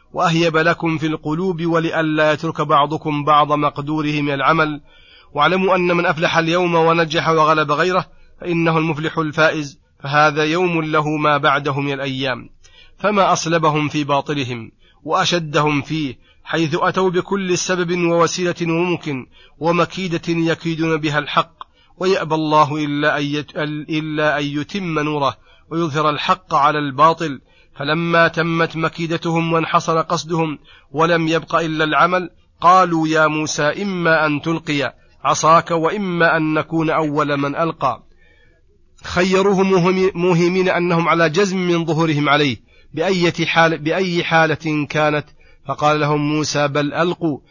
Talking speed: 120 wpm